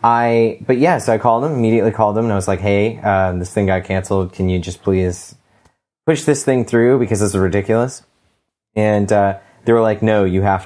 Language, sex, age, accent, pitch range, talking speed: English, male, 30-49, American, 95-115 Hz, 225 wpm